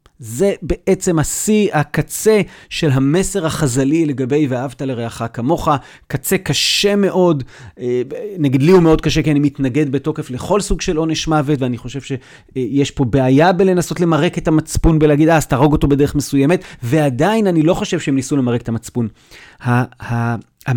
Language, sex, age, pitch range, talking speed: Hebrew, male, 30-49, 125-160 Hz, 155 wpm